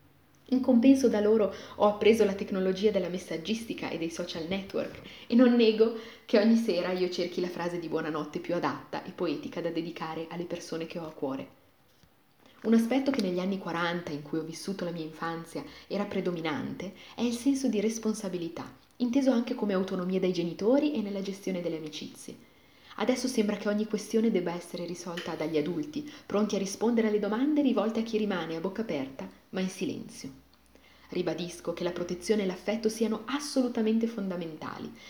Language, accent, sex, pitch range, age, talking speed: Italian, native, female, 170-220 Hz, 30-49, 175 wpm